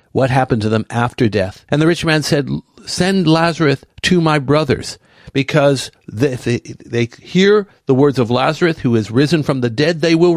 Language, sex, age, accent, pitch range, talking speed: English, male, 60-79, American, 115-155 Hz, 195 wpm